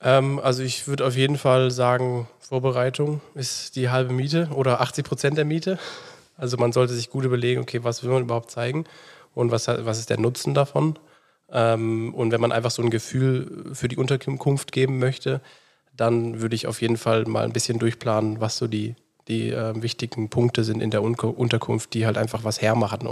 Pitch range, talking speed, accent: 115-130 Hz, 190 wpm, German